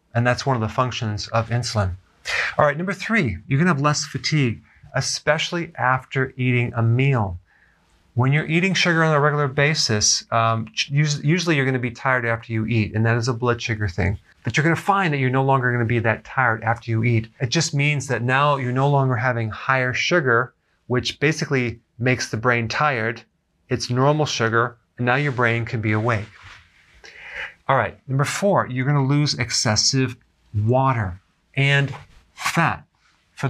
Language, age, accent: English, 40-59, American